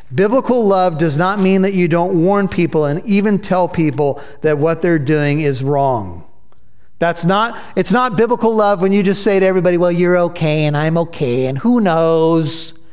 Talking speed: 190 wpm